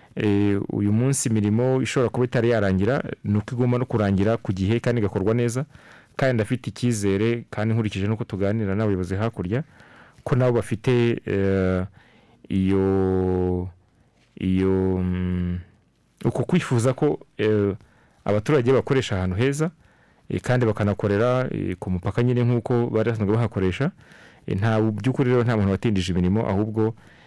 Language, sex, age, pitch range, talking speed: French, male, 40-59, 100-120 Hz, 130 wpm